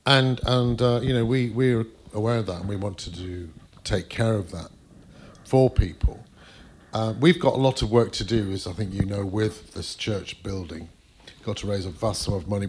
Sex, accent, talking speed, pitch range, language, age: male, British, 225 wpm, 95-120 Hz, English, 50-69